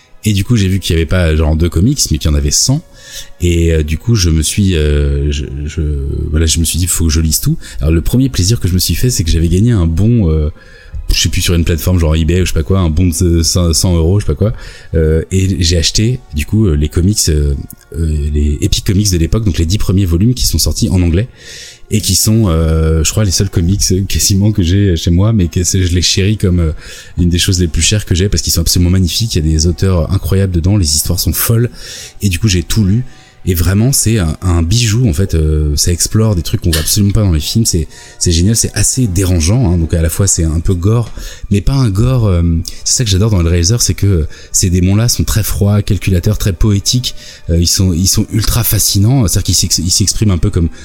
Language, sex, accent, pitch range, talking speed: French, male, French, 85-105 Hz, 260 wpm